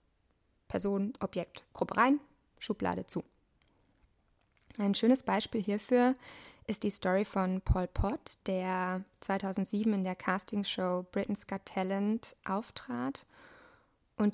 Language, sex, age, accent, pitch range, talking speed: English, female, 20-39, German, 185-215 Hz, 110 wpm